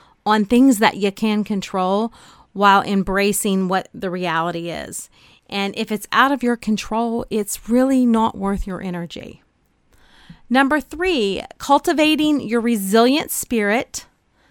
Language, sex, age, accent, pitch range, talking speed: English, female, 40-59, American, 180-225 Hz, 130 wpm